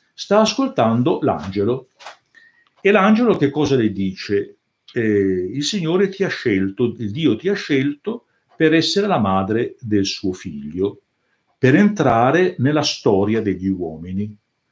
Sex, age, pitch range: male, 50-69, 105-145 Hz